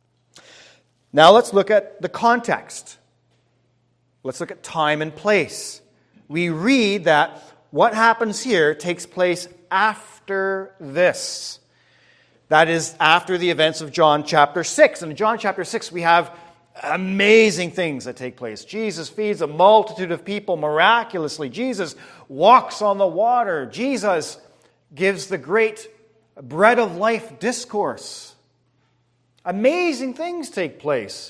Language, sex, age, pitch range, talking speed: English, male, 40-59, 160-230 Hz, 130 wpm